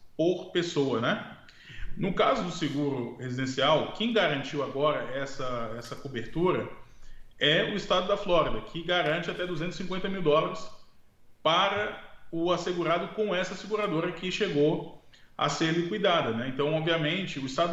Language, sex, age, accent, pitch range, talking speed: Portuguese, male, 20-39, Brazilian, 130-175 Hz, 135 wpm